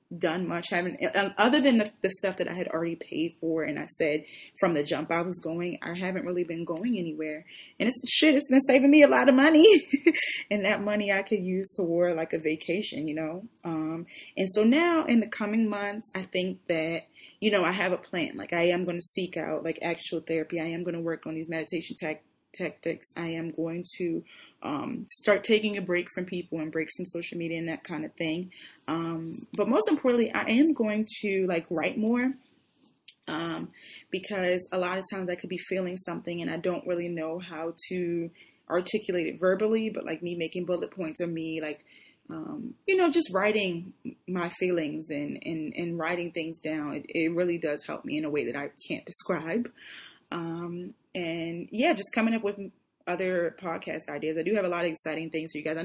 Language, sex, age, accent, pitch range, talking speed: English, female, 20-39, American, 165-210 Hz, 215 wpm